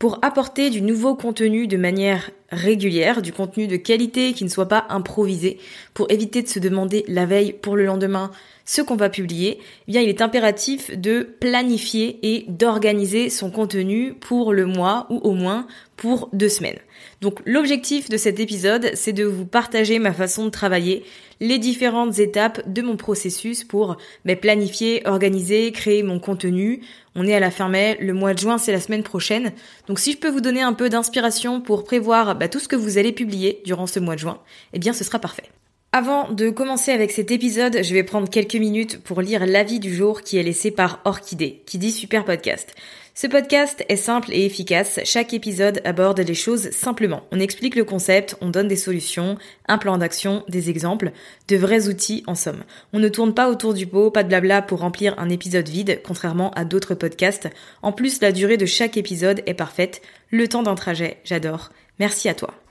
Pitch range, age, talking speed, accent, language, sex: 190-230 Hz, 20-39, 200 wpm, French, French, female